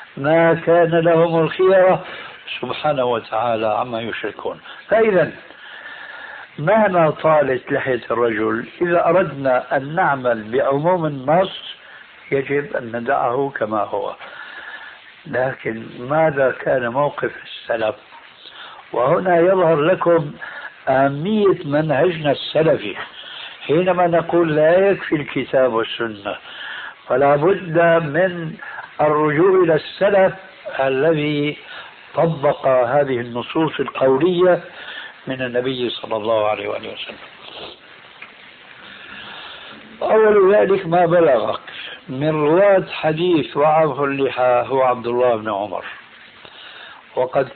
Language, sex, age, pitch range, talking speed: Arabic, male, 60-79, 130-170 Hz, 95 wpm